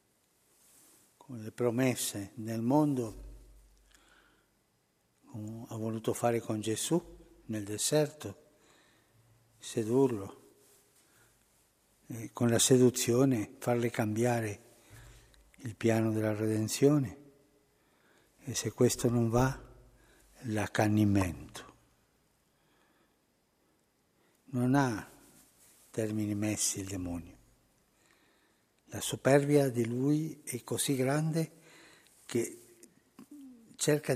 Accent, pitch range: native, 110-140 Hz